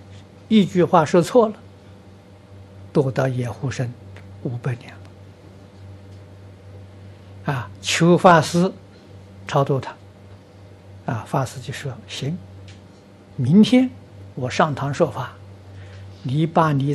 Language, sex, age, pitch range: Chinese, male, 60-79, 100-150 Hz